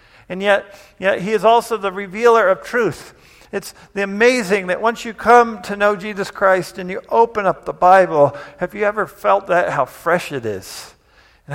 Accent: American